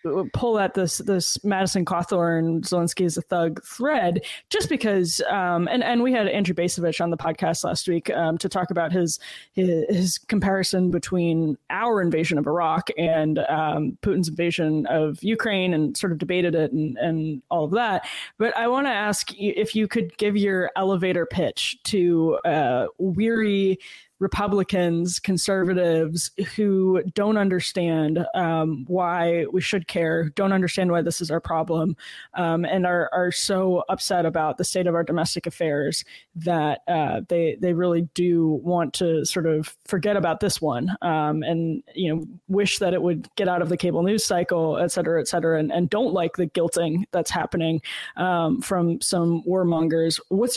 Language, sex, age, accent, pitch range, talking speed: English, female, 20-39, American, 165-195 Hz, 175 wpm